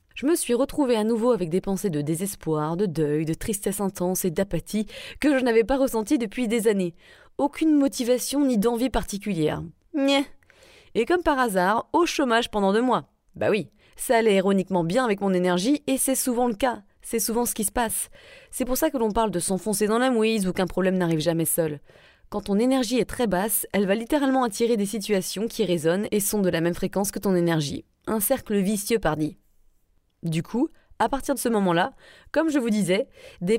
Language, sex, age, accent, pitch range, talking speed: French, female, 20-39, French, 190-255 Hz, 210 wpm